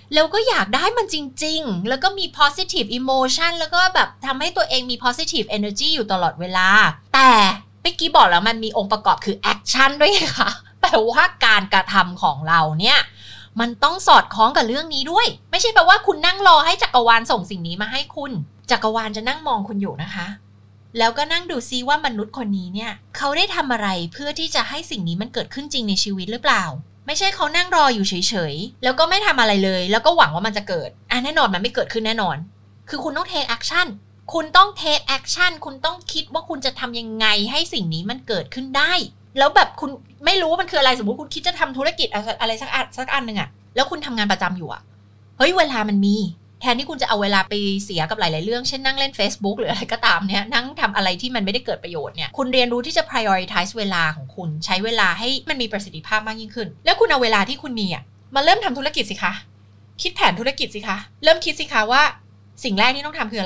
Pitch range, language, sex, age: 195-300 Hz, Thai, female, 20-39